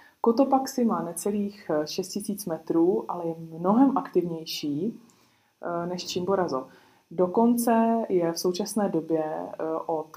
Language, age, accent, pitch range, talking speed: Czech, 20-39, native, 165-200 Hz, 100 wpm